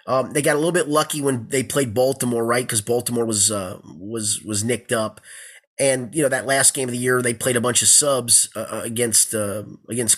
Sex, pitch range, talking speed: male, 125-180 Hz, 230 wpm